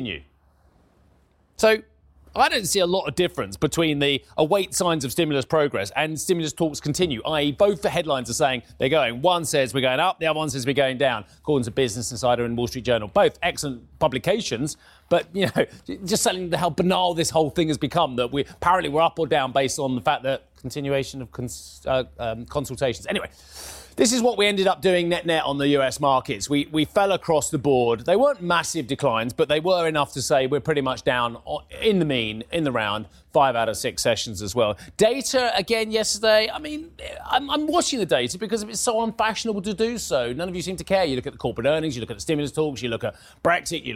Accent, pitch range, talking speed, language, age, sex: British, 130-185 Hz, 225 wpm, English, 30-49, male